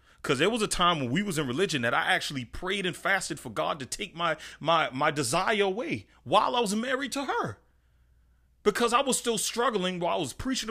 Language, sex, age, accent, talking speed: English, male, 30-49, American, 225 wpm